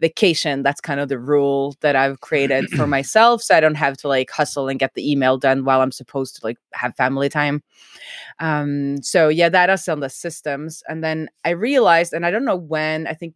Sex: female